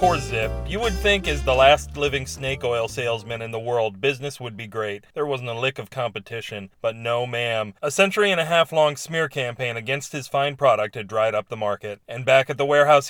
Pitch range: 115-145 Hz